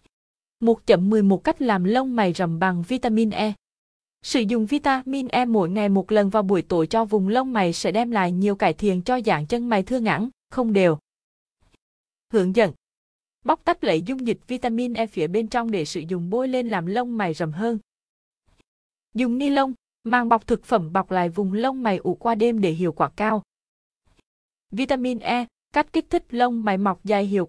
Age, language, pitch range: 20-39, Vietnamese, 190-245 Hz